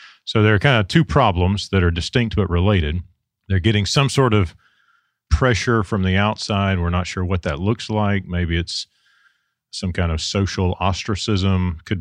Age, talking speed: 40-59, 180 wpm